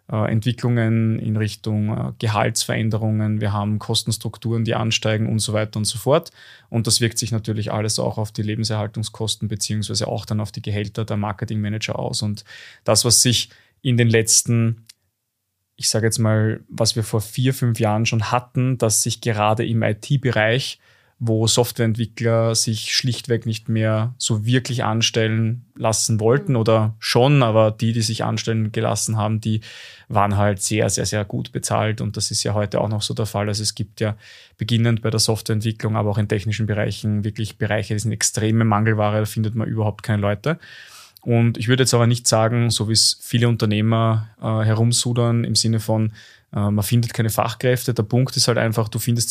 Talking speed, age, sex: 185 wpm, 20-39, male